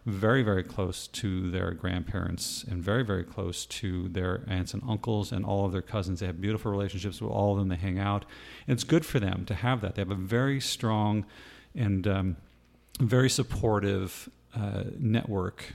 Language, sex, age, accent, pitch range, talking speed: English, male, 40-59, American, 95-115 Hz, 185 wpm